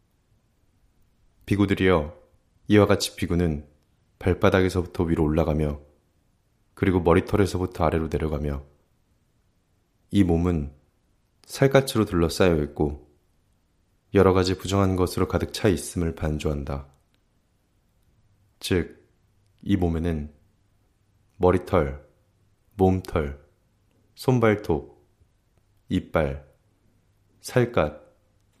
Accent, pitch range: native, 85-105 Hz